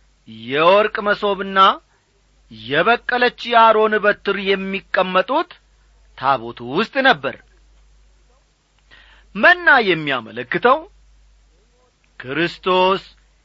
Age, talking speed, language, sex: 40-59, 50 wpm, Amharic, male